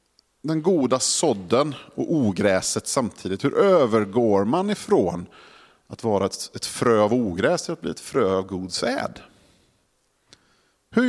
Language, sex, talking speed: Swedish, male, 130 wpm